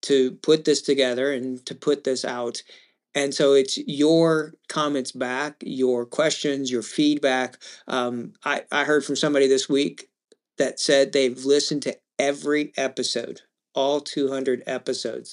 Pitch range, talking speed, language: 130-150 Hz, 145 wpm, English